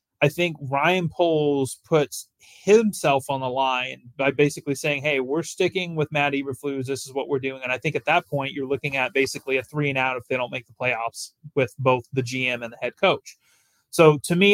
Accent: American